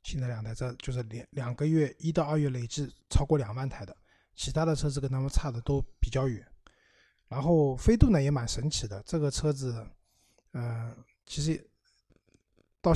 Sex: male